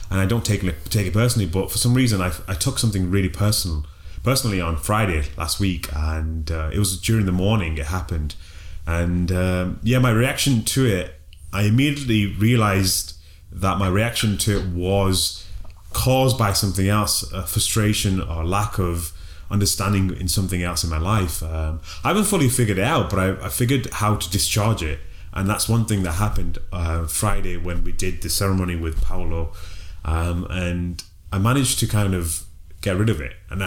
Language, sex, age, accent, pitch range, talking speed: English, male, 30-49, British, 85-105 Hz, 185 wpm